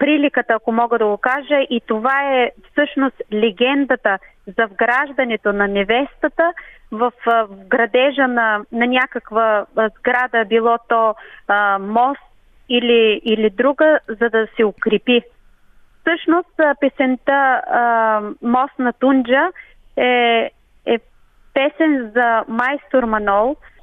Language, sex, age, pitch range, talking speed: Bulgarian, female, 30-49, 225-275 Hz, 110 wpm